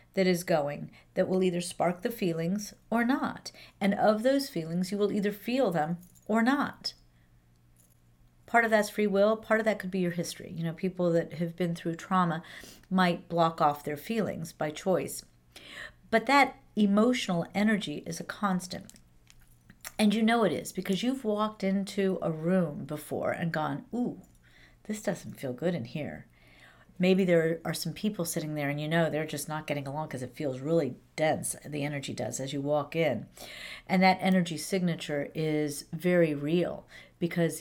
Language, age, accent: English, 50-69, American